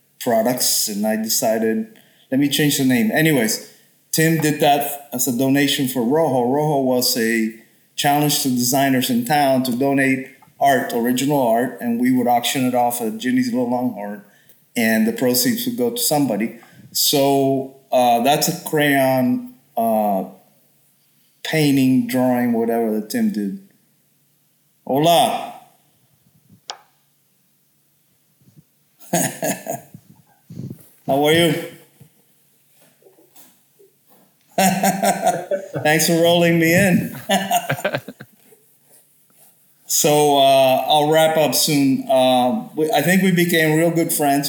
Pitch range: 125-165 Hz